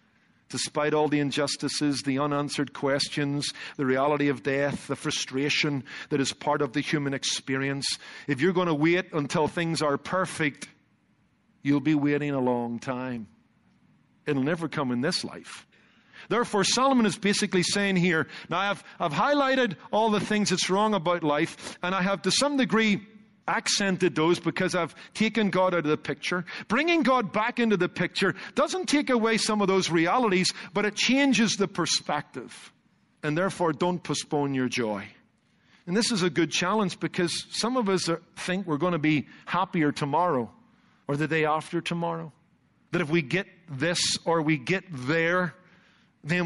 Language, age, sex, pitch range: English, 50-69, male, 145-195 Hz